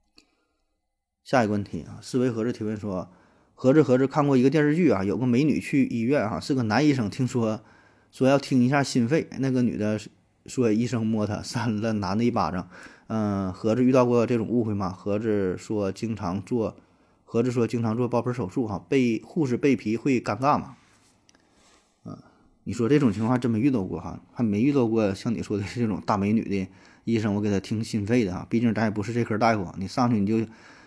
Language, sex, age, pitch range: Chinese, male, 20-39, 105-125 Hz